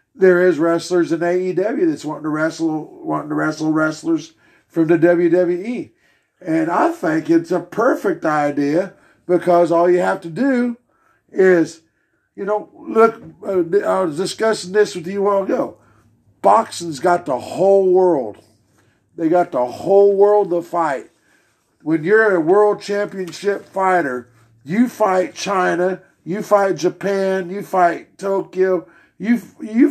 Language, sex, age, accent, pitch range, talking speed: English, male, 50-69, American, 165-200 Hz, 140 wpm